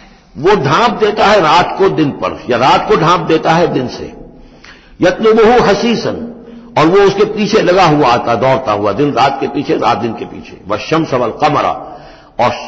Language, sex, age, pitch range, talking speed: Hindi, male, 60-79, 130-210 Hz, 195 wpm